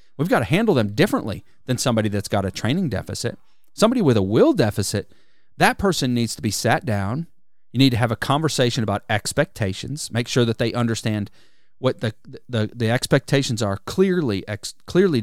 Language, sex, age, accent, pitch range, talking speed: English, male, 40-59, American, 110-145 Hz, 185 wpm